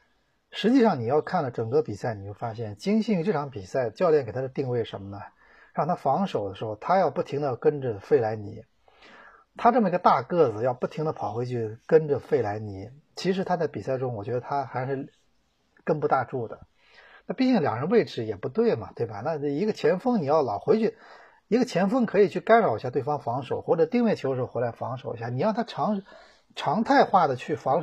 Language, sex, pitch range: Chinese, male, 115-195 Hz